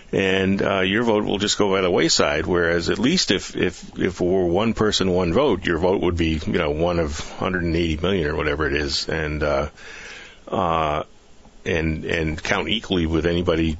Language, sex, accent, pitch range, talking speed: English, male, American, 80-100 Hz, 195 wpm